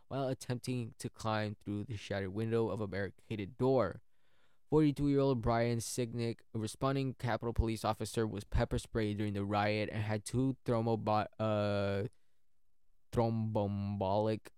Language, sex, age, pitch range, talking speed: English, male, 20-39, 105-120 Hz, 130 wpm